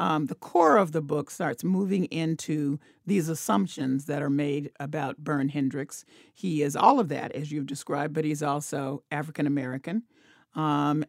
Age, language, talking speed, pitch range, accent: 40-59, English, 160 wpm, 145-170 Hz, American